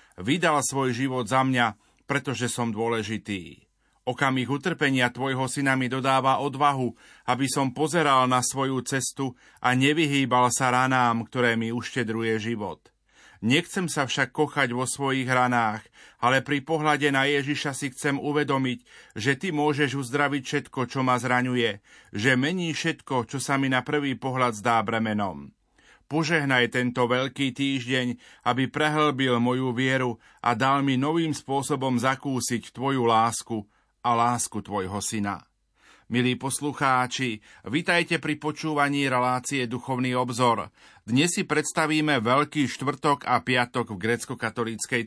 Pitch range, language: 120-140 Hz, Slovak